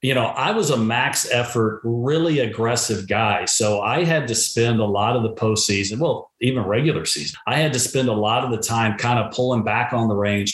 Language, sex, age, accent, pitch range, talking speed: English, male, 40-59, American, 105-120 Hz, 230 wpm